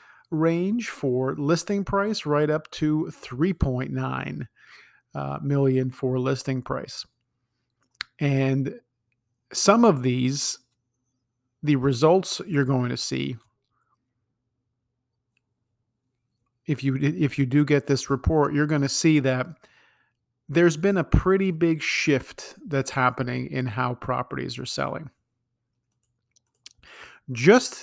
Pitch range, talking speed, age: 125-160 Hz, 105 wpm, 40-59